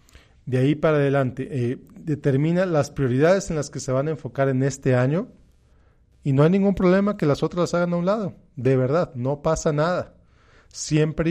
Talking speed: 195 wpm